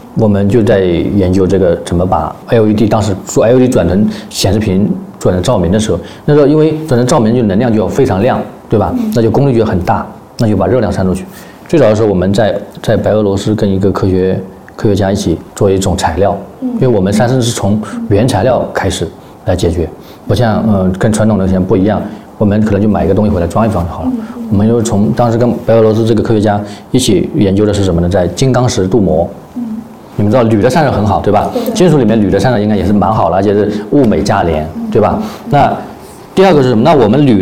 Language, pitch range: Chinese, 100-120 Hz